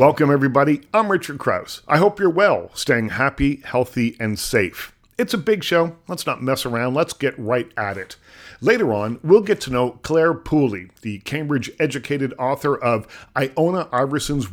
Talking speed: 170 wpm